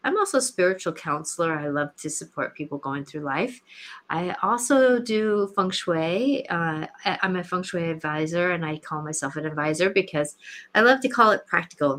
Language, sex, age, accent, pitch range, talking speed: English, female, 30-49, American, 165-215 Hz, 185 wpm